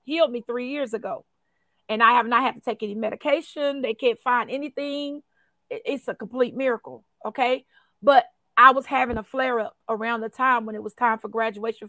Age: 40-59